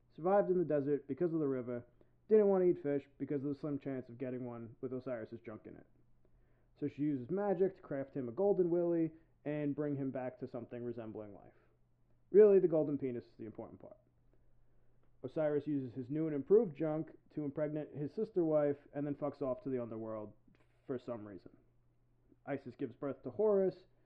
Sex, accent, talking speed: male, American, 195 wpm